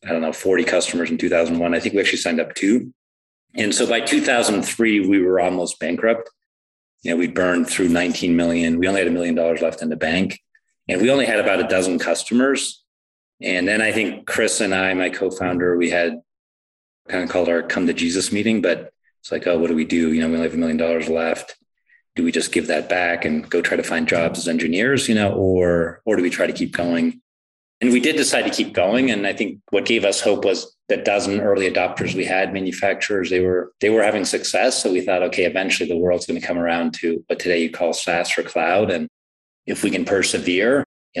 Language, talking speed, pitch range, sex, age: English, 235 wpm, 85-100 Hz, male, 30-49